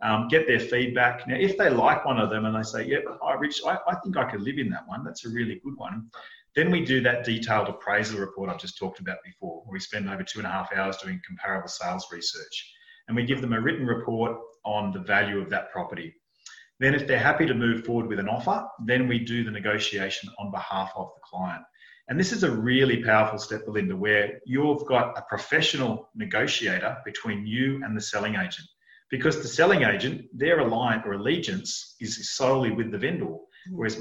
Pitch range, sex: 110-145 Hz, male